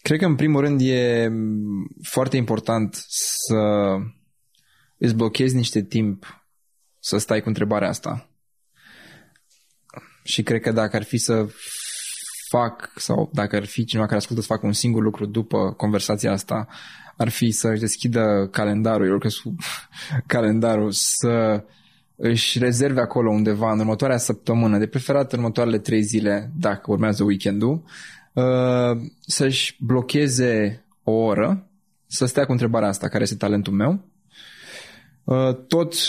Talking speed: 135 wpm